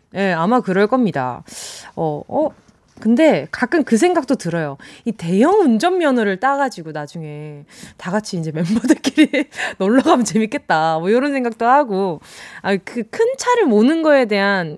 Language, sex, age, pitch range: Korean, female, 20-39, 190-280 Hz